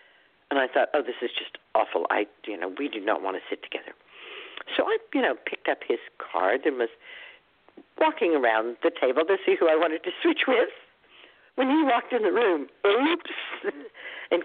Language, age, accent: English, 60-79, American